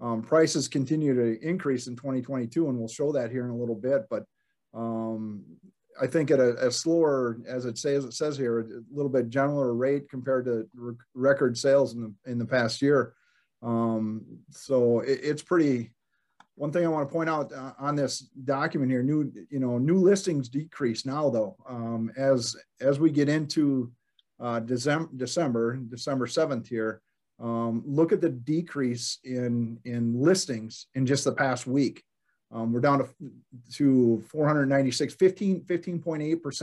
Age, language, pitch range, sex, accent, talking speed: 40-59, English, 120-145 Hz, male, American, 165 wpm